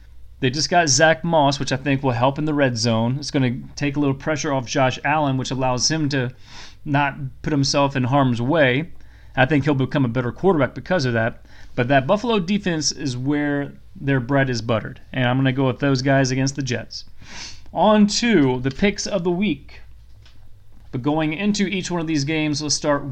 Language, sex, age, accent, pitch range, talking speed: English, male, 30-49, American, 130-160 Hz, 215 wpm